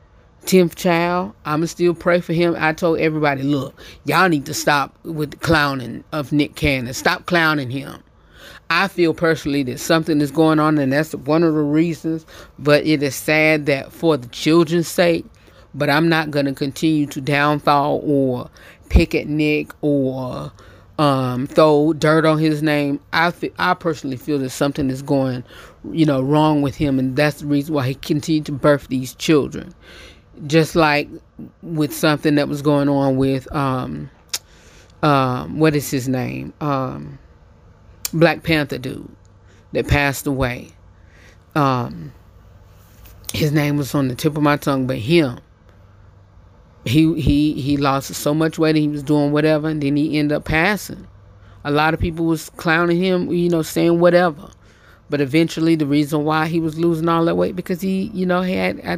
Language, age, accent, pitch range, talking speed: English, 30-49, American, 130-160 Hz, 175 wpm